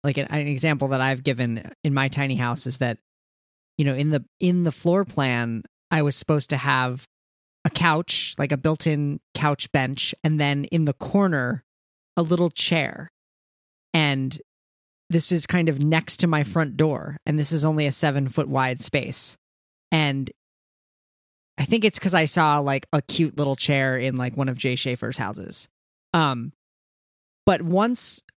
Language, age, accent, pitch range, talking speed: English, 30-49, American, 130-165 Hz, 170 wpm